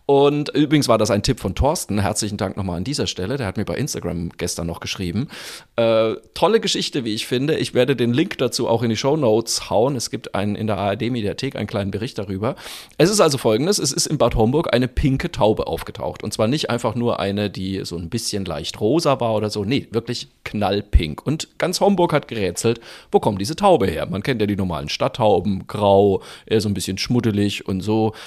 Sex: male